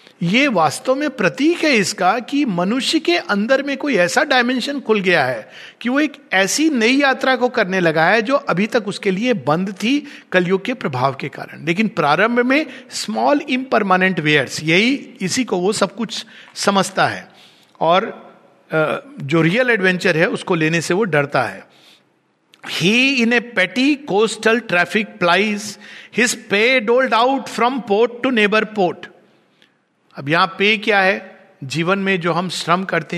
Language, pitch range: Hindi, 170-230 Hz